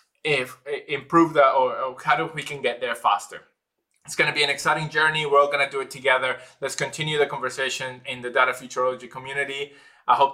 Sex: male